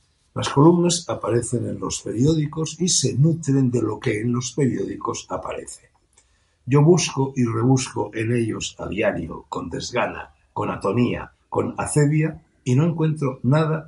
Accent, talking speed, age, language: Spanish, 145 wpm, 60-79, Spanish